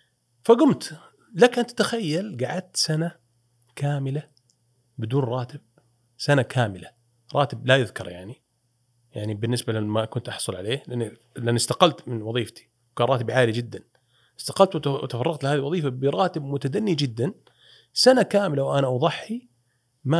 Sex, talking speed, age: male, 125 wpm, 40-59